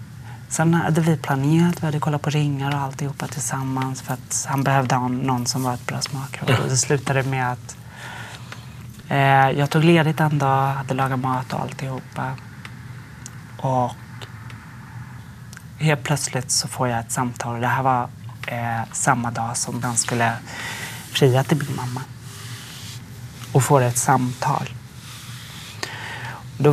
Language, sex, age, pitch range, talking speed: Finnish, male, 30-49, 120-135 Hz, 150 wpm